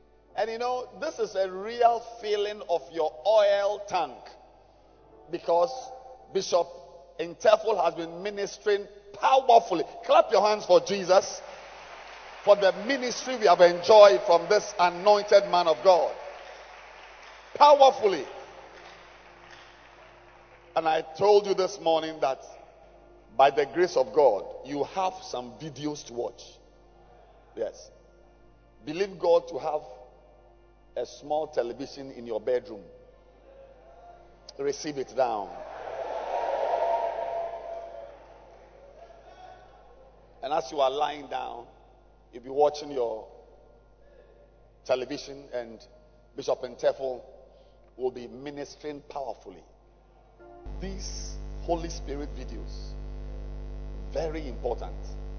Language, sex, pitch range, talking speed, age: English, male, 145-220 Hz, 100 wpm, 50-69